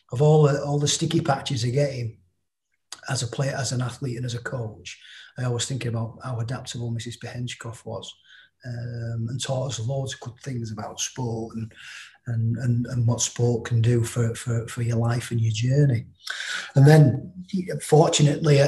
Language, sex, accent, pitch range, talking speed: English, male, British, 115-135 Hz, 180 wpm